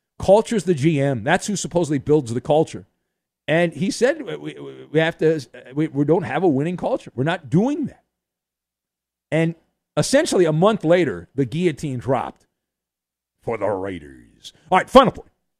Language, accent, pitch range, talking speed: English, American, 135-200 Hz, 165 wpm